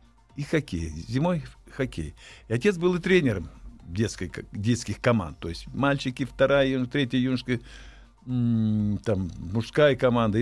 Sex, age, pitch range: male, 60-79, 95-130 Hz